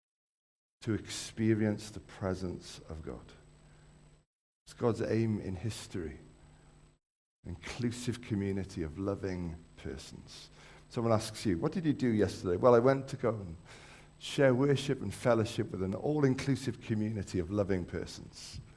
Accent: British